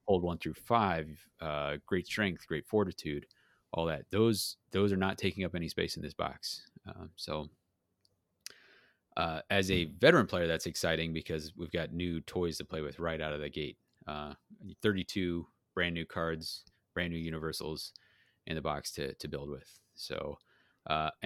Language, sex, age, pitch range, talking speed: English, male, 30-49, 80-100 Hz, 175 wpm